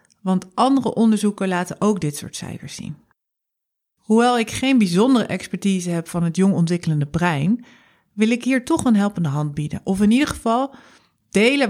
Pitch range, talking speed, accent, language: 175-225 Hz, 170 wpm, Dutch, Dutch